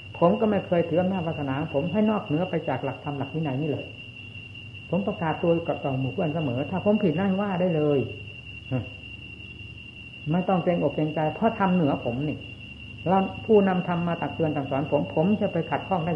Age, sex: 60-79, female